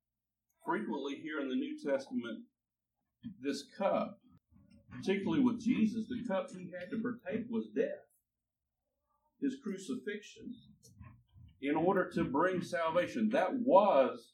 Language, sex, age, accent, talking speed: English, male, 50-69, American, 115 wpm